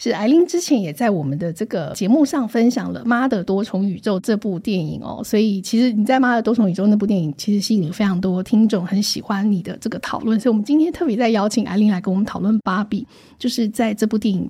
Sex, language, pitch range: female, Chinese, 205-250 Hz